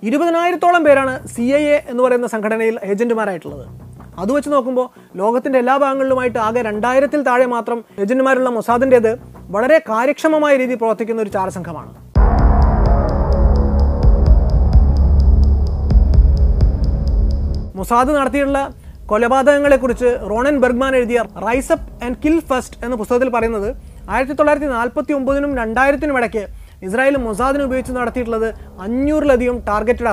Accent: native